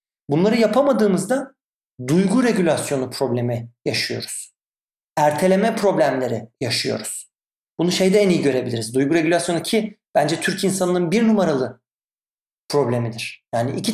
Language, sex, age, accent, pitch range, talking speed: Turkish, male, 40-59, native, 155-215 Hz, 110 wpm